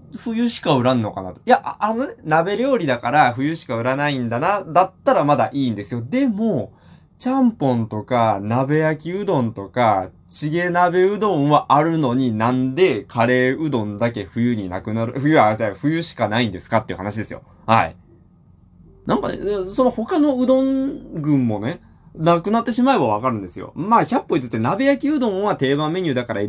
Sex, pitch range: male, 115-185 Hz